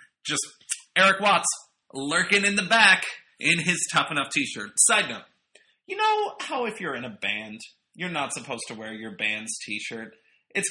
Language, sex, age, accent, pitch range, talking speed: English, male, 30-49, American, 145-240 Hz, 175 wpm